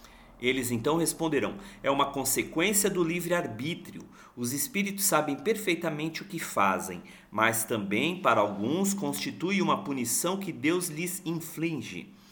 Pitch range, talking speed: 125-195 Hz, 125 wpm